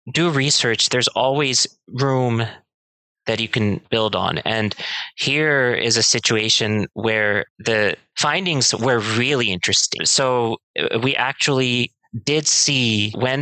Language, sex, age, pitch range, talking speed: English, male, 30-49, 110-130 Hz, 120 wpm